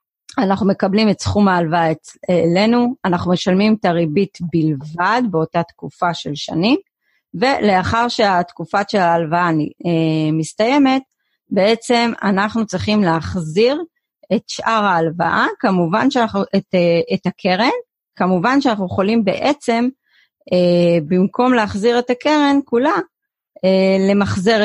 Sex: female